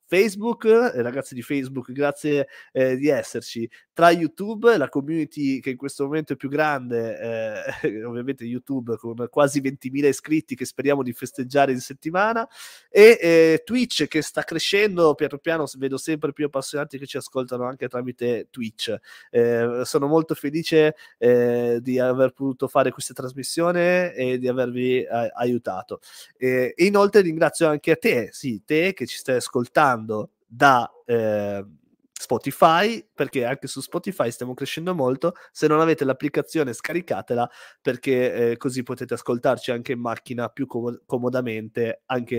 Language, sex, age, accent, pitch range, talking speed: Italian, male, 20-39, native, 125-160 Hz, 150 wpm